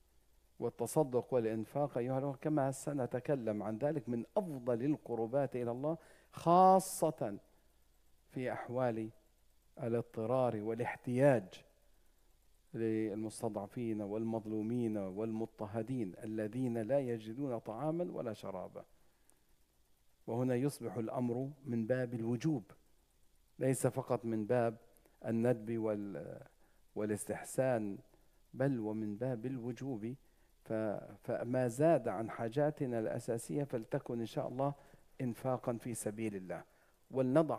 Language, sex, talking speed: English, male, 90 wpm